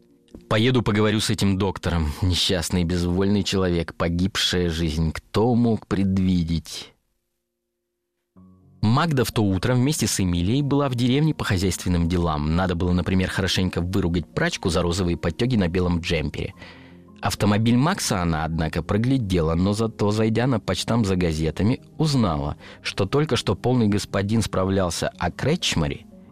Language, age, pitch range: Russian, 30-49, 90-115 Hz